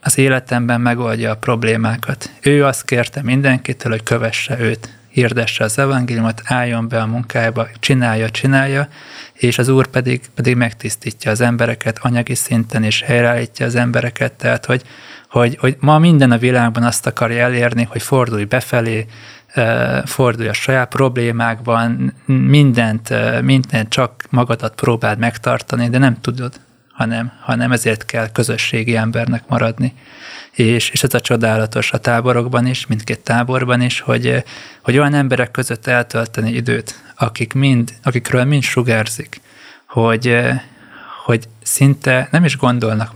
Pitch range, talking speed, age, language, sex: 115-130 Hz, 135 wpm, 20-39, Hungarian, male